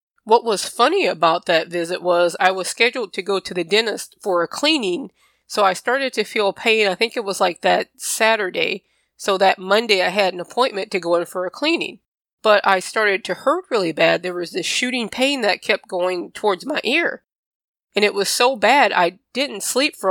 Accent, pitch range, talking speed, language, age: American, 185-225 Hz, 210 wpm, English, 20-39